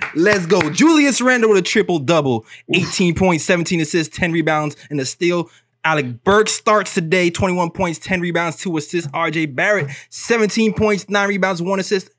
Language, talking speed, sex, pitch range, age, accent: English, 170 wpm, male, 140-210 Hz, 20-39, American